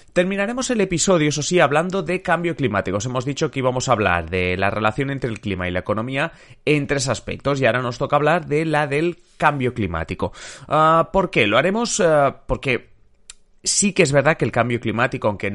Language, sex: Spanish, male